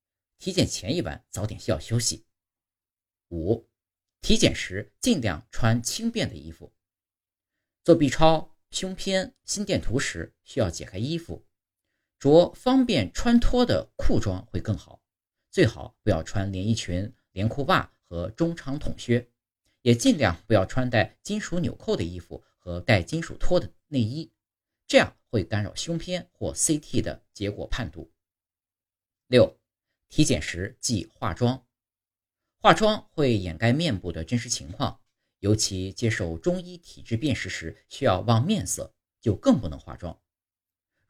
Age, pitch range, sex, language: 50-69, 90-135 Hz, male, Chinese